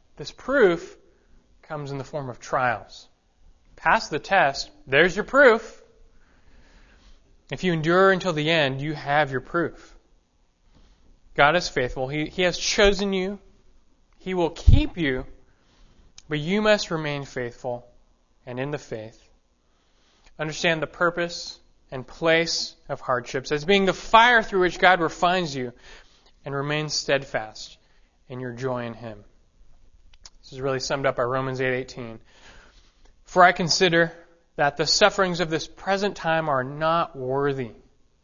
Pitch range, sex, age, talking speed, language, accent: 120-175 Hz, male, 20-39, 140 wpm, English, American